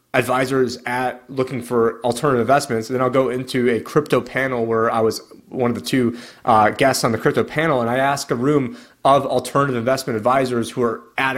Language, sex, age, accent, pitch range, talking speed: English, male, 30-49, American, 115-135 Hz, 205 wpm